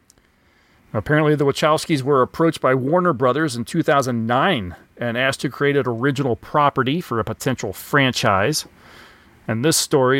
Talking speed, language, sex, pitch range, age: 140 wpm, English, male, 120-160 Hz, 40-59